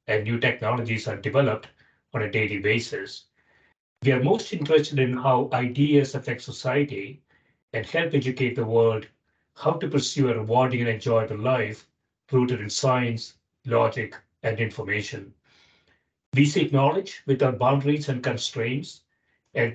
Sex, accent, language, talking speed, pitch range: male, Indian, English, 135 wpm, 115-140 Hz